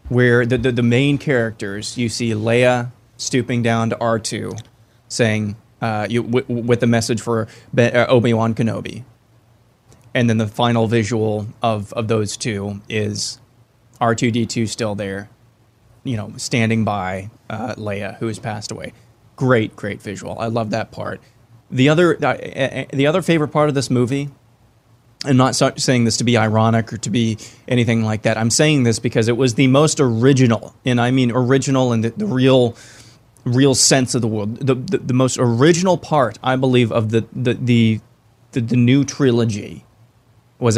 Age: 20-39